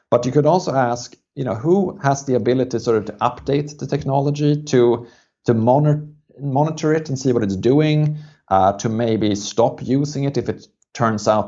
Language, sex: English, male